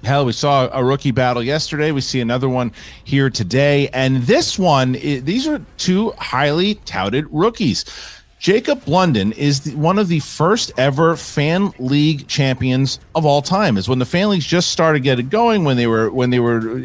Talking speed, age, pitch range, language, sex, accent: 180 wpm, 40-59, 130-165 Hz, English, male, American